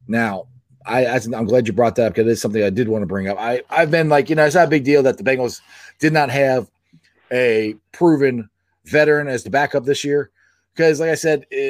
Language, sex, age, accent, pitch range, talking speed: English, male, 30-49, American, 120-165 Hz, 230 wpm